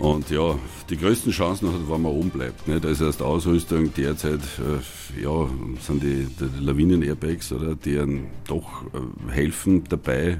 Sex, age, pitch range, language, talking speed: male, 60-79, 70-80 Hz, German, 165 wpm